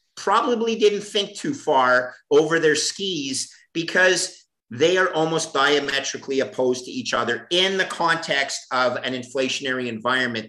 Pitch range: 135-180 Hz